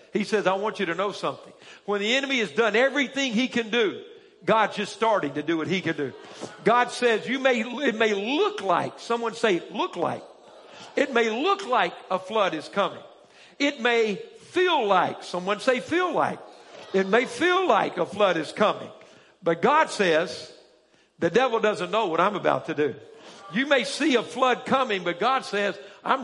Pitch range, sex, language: 195-265 Hz, male, English